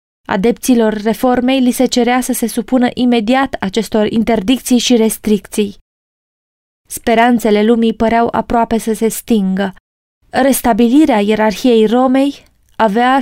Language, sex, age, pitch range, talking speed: Romanian, female, 20-39, 215-250 Hz, 110 wpm